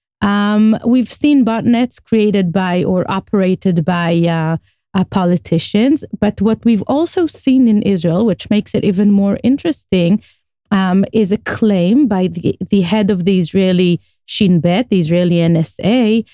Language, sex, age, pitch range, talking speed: English, female, 30-49, 175-220 Hz, 150 wpm